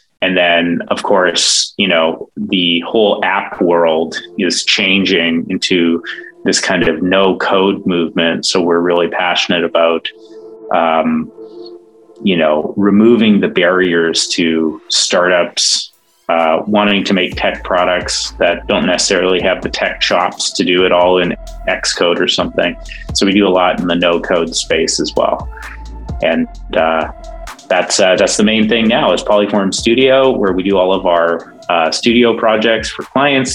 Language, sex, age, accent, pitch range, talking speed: English, male, 30-49, American, 85-110 Hz, 155 wpm